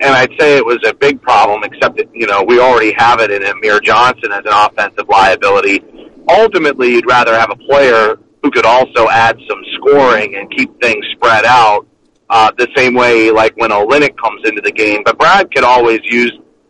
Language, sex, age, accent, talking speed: English, male, 40-59, American, 200 wpm